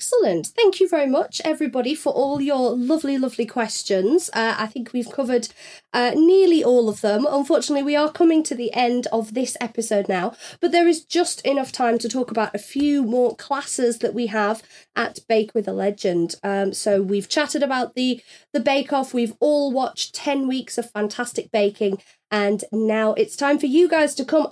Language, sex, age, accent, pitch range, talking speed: English, female, 30-49, British, 220-285 Hz, 195 wpm